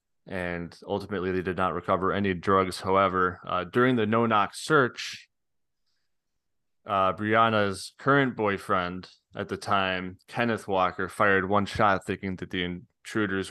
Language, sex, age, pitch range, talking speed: English, male, 20-39, 90-105 Hz, 135 wpm